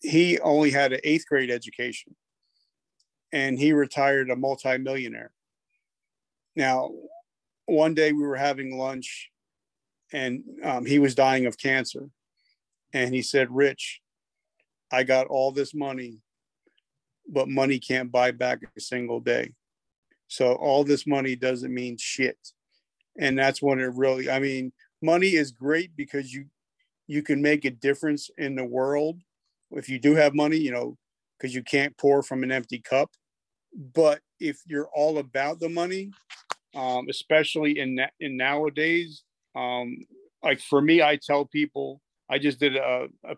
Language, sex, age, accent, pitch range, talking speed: English, male, 40-59, American, 130-145 Hz, 150 wpm